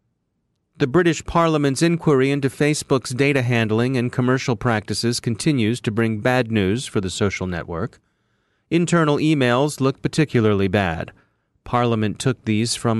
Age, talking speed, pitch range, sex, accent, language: 30-49, 135 wpm, 110-135 Hz, male, American, English